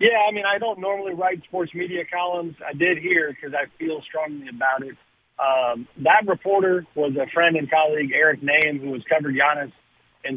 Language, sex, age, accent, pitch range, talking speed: English, male, 50-69, American, 140-170 Hz, 195 wpm